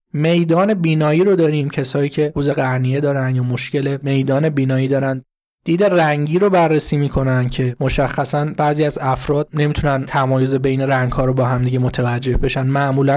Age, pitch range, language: 20-39, 130-155 Hz, Persian